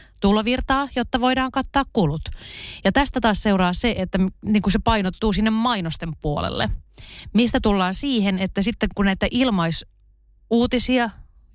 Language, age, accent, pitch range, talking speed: Finnish, 30-49, native, 170-220 Hz, 130 wpm